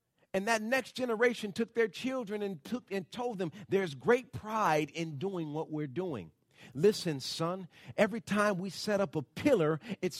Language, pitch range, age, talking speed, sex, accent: English, 150-220 Hz, 40-59, 175 wpm, male, American